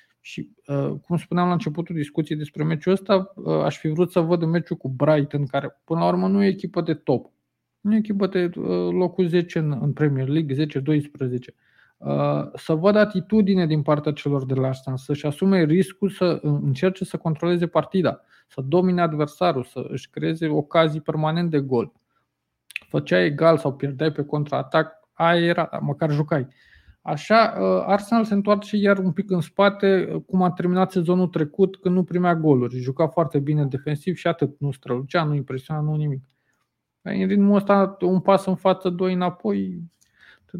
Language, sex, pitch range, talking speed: Romanian, male, 140-180 Hz, 165 wpm